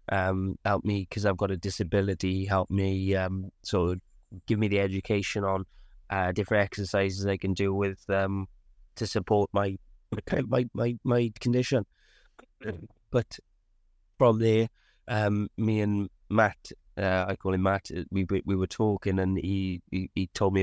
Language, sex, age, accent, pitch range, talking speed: English, male, 20-39, British, 90-105 Hz, 160 wpm